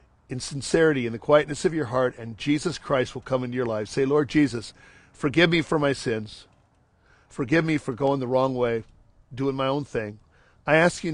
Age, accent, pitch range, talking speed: 50-69, American, 115-150 Hz, 205 wpm